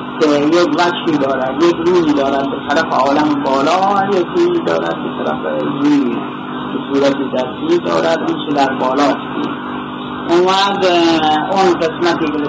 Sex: male